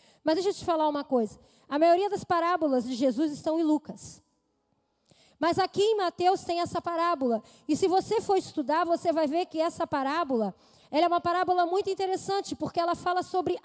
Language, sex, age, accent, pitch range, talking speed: Portuguese, female, 20-39, Brazilian, 300-370 Hz, 195 wpm